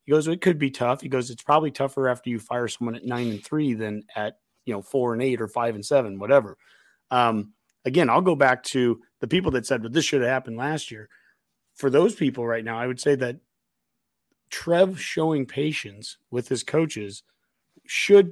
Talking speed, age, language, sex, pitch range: 205 wpm, 30-49, English, male, 115-145 Hz